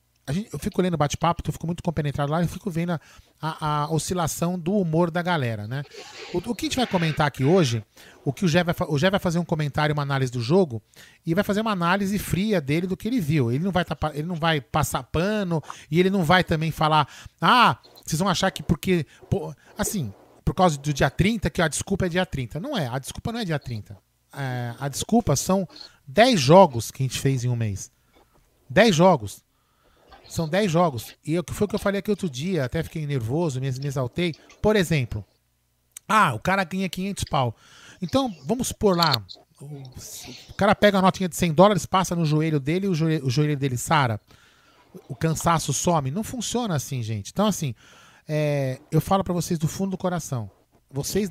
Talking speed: 210 wpm